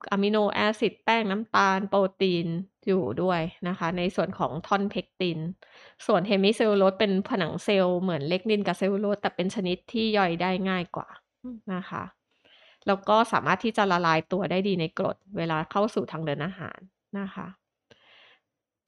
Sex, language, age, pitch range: female, Thai, 20-39, 180-215 Hz